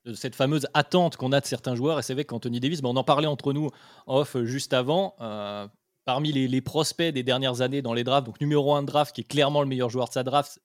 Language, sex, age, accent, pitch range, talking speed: French, male, 20-39, French, 120-150 Hz, 265 wpm